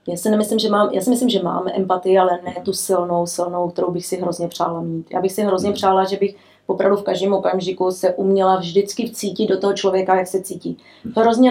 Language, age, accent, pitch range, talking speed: Czech, 30-49, native, 195-225 Hz, 230 wpm